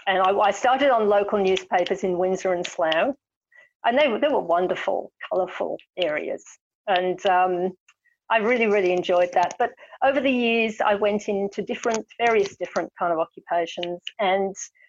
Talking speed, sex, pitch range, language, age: 155 wpm, female, 185-270 Hz, English, 50-69